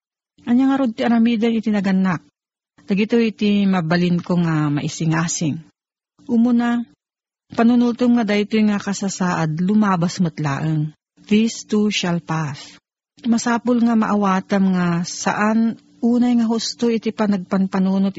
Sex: female